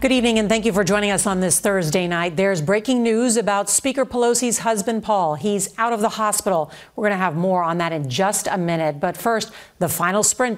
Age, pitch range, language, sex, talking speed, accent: 40-59, 175-235 Hz, English, female, 235 wpm, American